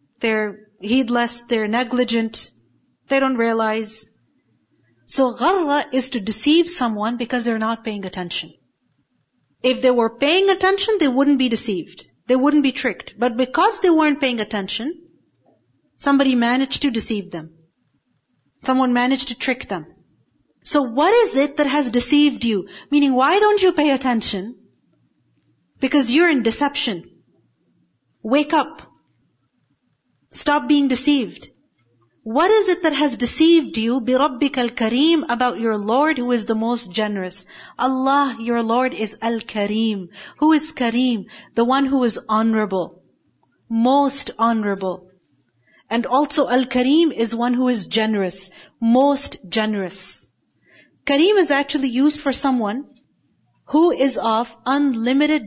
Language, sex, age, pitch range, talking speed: English, female, 40-59, 225-285 Hz, 130 wpm